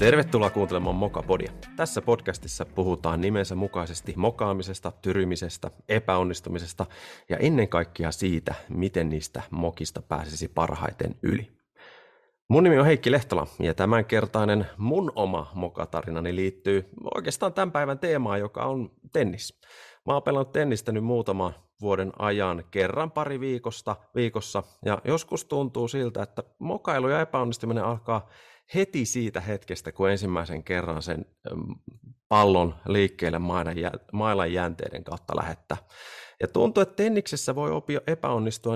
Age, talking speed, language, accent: 30-49, 125 wpm, Finnish, native